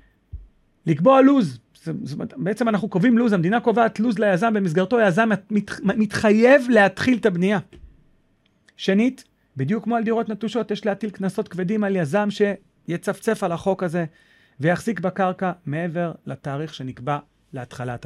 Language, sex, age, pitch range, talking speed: Hebrew, male, 40-59, 160-210 Hz, 135 wpm